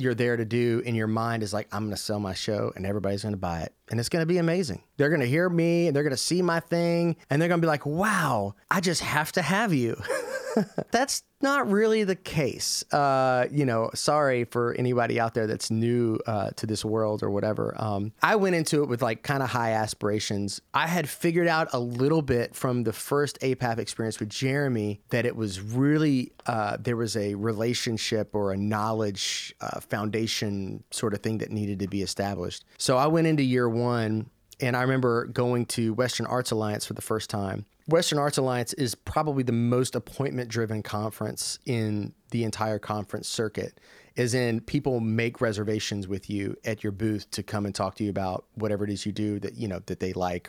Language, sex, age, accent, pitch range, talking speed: English, male, 30-49, American, 105-135 Hz, 210 wpm